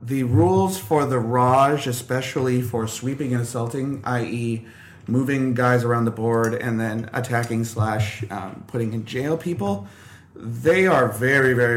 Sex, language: male, English